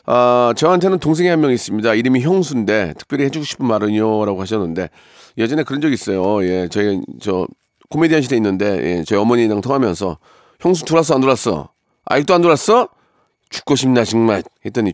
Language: Korean